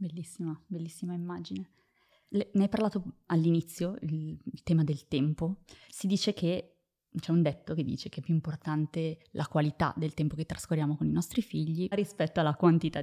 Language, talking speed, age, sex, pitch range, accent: Italian, 170 wpm, 20-39, female, 155-180 Hz, native